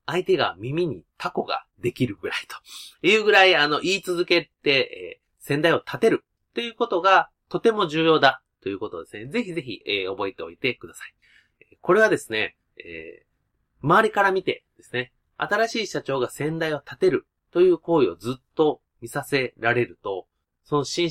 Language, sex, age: Japanese, male, 30-49